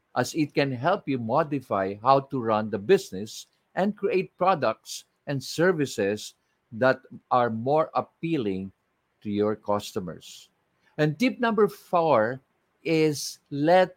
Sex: male